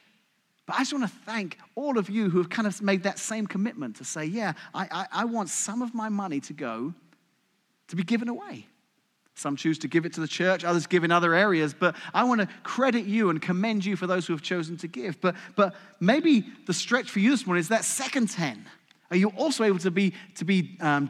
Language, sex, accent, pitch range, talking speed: English, male, British, 180-230 Hz, 240 wpm